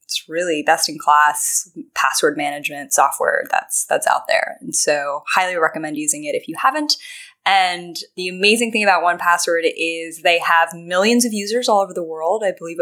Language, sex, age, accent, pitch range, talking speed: English, female, 10-29, American, 170-245 Hz, 180 wpm